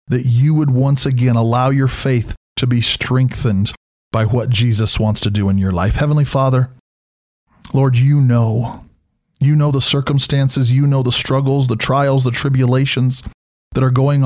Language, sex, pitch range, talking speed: English, male, 120-145 Hz, 170 wpm